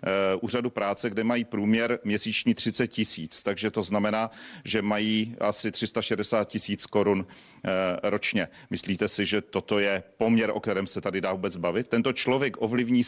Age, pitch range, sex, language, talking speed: 40-59, 100-110 Hz, male, Czech, 155 wpm